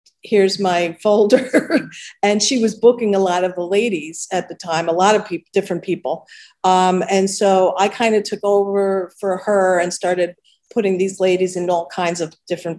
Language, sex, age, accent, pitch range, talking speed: English, female, 50-69, American, 180-210 Hz, 190 wpm